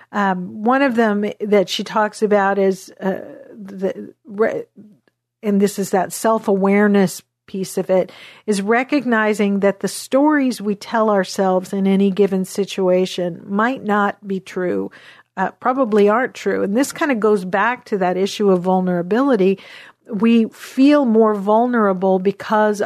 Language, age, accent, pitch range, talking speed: English, 50-69, American, 190-225 Hz, 145 wpm